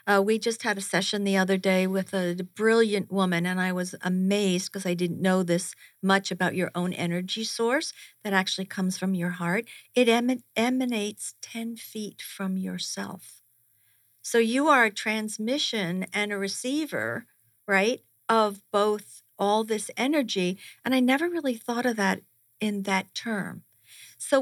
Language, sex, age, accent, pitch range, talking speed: English, female, 50-69, American, 180-230 Hz, 160 wpm